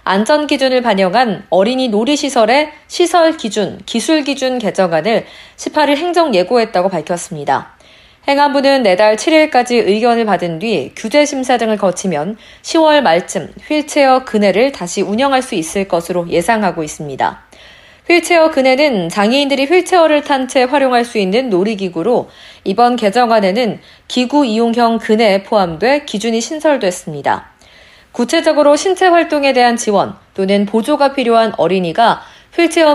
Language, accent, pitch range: Korean, native, 200-285 Hz